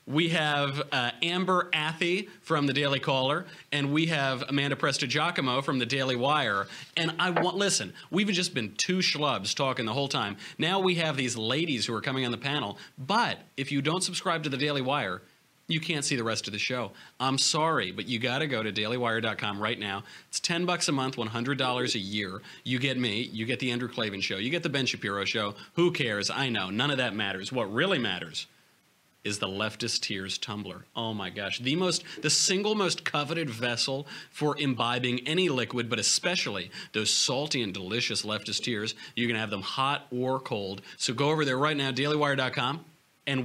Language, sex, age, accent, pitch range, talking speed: English, male, 30-49, American, 120-155 Hz, 205 wpm